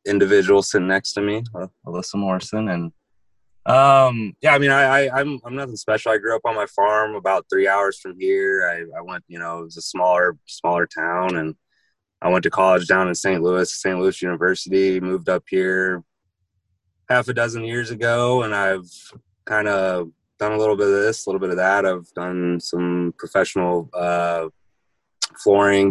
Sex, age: male, 20-39